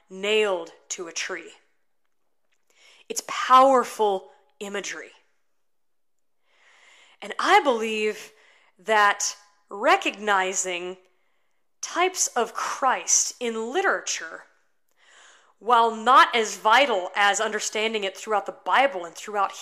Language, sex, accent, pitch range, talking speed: English, female, American, 195-270 Hz, 90 wpm